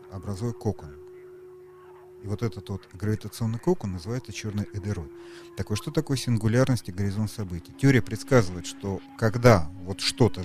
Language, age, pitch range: Russian, 40-59, 95-125 Hz